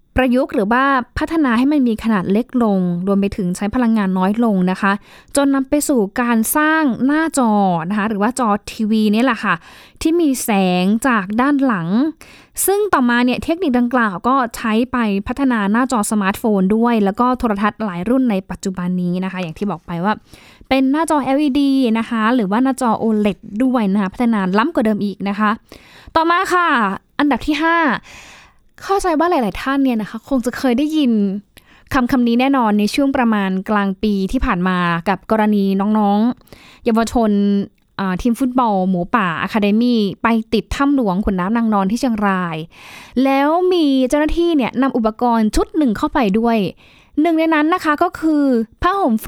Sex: female